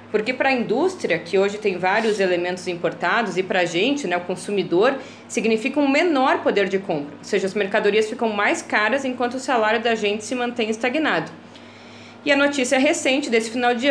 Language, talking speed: Portuguese, 195 wpm